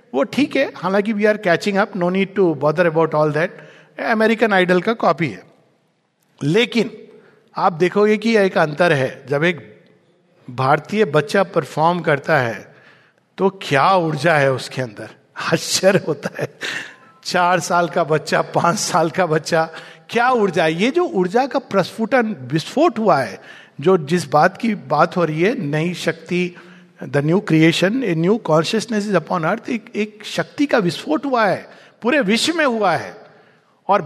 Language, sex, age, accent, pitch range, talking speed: Hindi, male, 50-69, native, 165-235 Hz, 155 wpm